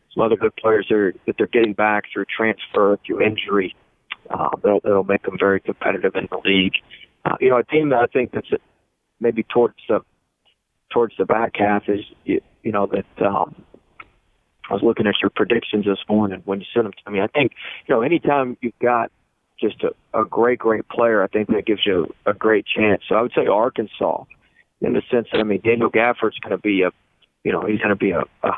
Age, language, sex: 40-59, English, male